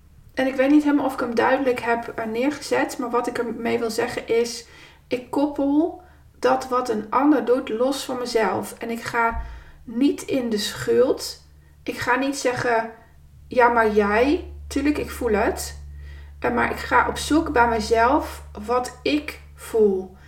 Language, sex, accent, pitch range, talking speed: Dutch, female, Dutch, 205-250 Hz, 165 wpm